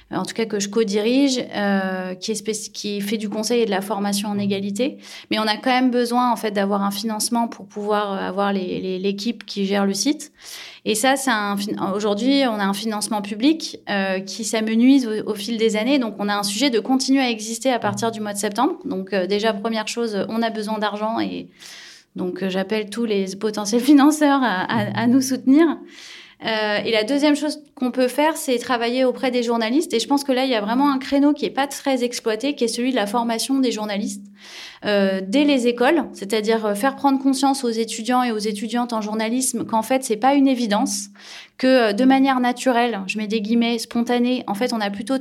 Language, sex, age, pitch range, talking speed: French, female, 20-39, 210-255 Hz, 225 wpm